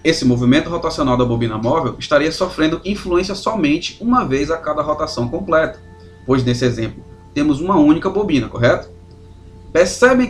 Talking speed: 145 wpm